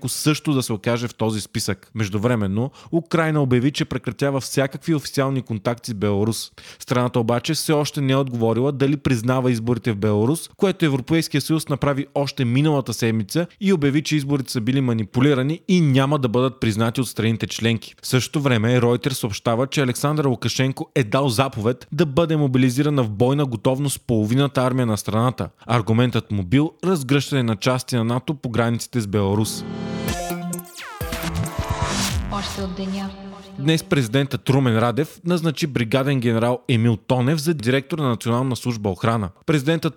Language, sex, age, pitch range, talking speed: Bulgarian, male, 20-39, 120-150 Hz, 150 wpm